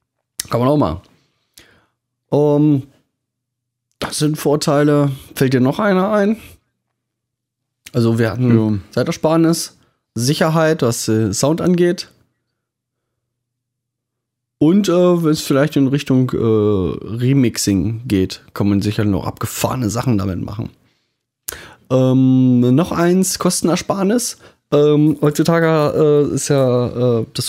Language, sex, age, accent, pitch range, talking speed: German, male, 20-39, German, 115-150 Hz, 110 wpm